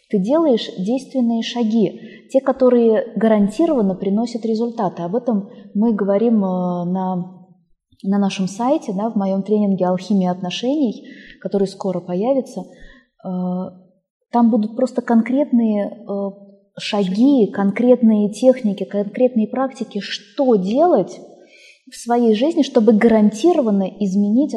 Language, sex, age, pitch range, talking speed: Russian, female, 20-39, 195-245 Hz, 100 wpm